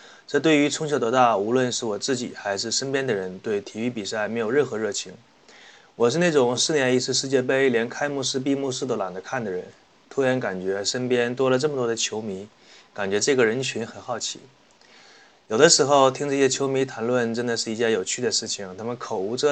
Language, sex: Chinese, male